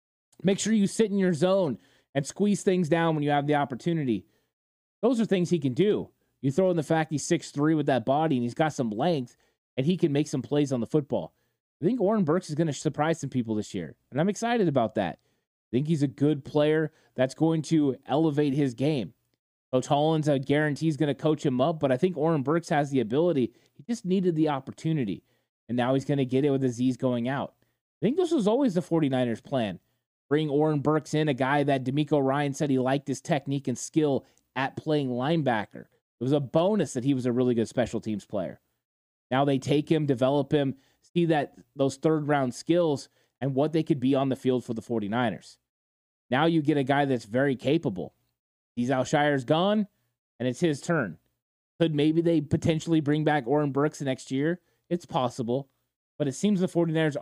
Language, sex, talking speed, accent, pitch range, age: English, male, 215 wpm, American, 130-160 Hz, 20-39